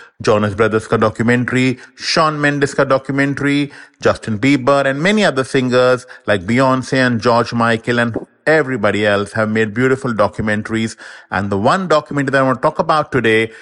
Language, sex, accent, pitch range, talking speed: English, male, Indian, 115-145 Hz, 155 wpm